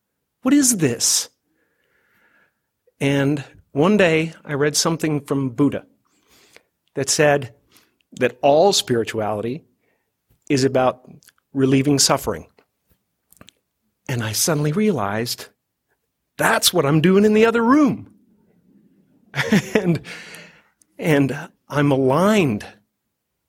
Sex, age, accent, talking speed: male, 50-69, American, 90 wpm